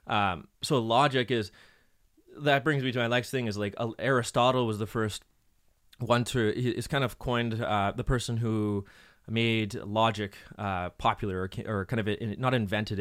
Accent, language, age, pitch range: American, English, 20-39, 105-120 Hz